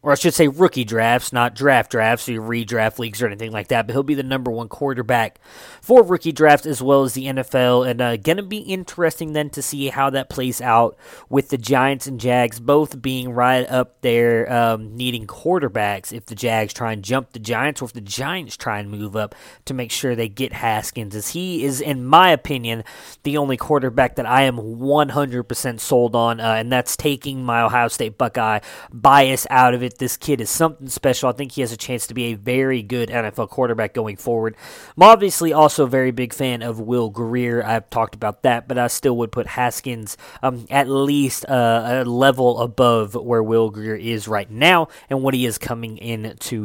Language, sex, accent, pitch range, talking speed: English, male, American, 115-140 Hz, 210 wpm